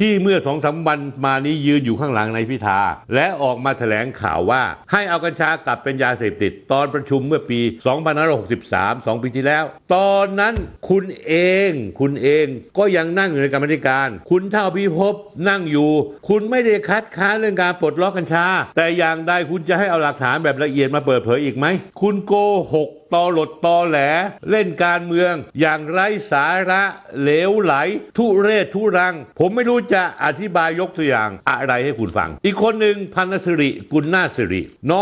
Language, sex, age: Thai, male, 60-79